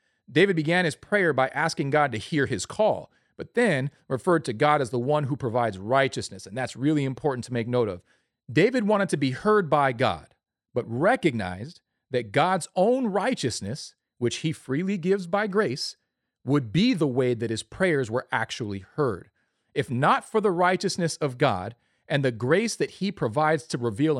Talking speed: 185 wpm